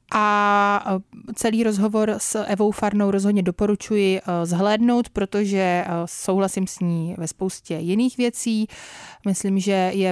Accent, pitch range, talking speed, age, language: native, 180-205 Hz, 120 wpm, 30-49, Czech